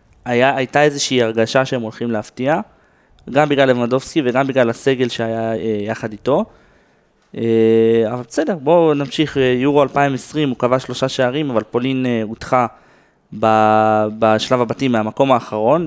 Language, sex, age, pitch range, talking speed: Hebrew, male, 20-39, 115-135 Hz, 135 wpm